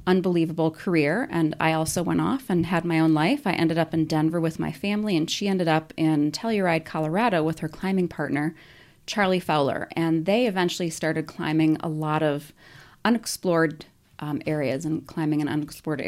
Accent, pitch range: American, 150-175 Hz